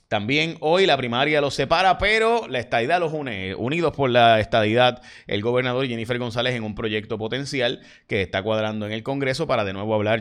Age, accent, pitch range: 30-49, Venezuelan, 105-135 Hz